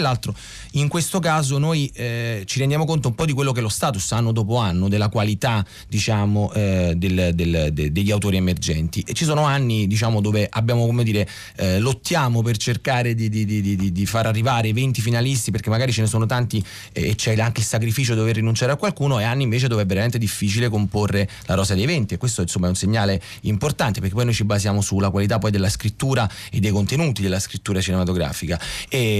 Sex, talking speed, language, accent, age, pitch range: male, 215 wpm, Italian, native, 30-49, 105-130 Hz